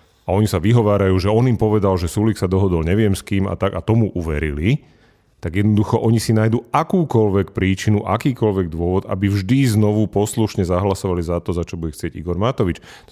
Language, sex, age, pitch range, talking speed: Slovak, male, 30-49, 95-115 Hz, 195 wpm